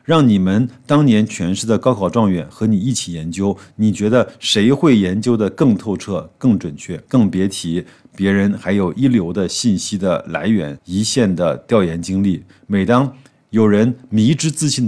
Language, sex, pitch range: Chinese, male, 95-120 Hz